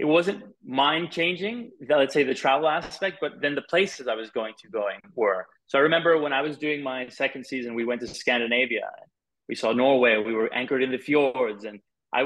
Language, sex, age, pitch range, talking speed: English, male, 20-39, 120-160 Hz, 210 wpm